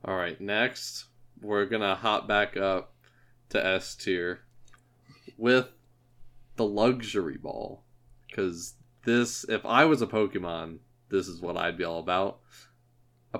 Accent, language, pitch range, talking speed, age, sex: American, English, 100-120 Hz, 125 wpm, 20-39, male